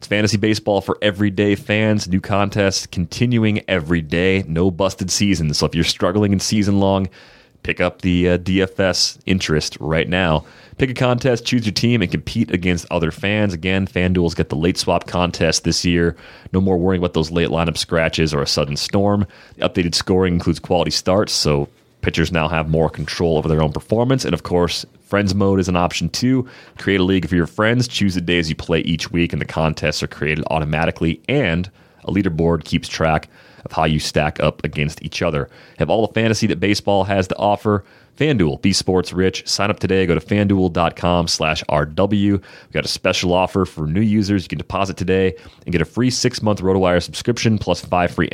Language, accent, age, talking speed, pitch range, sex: English, American, 30-49, 200 wpm, 85-105 Hz, male